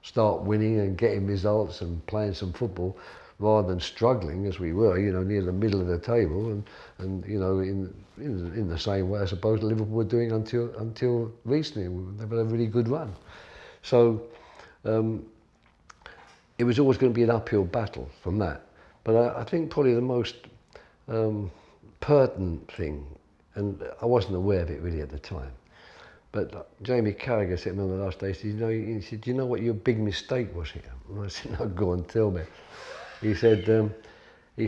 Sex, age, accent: male, 50-69, British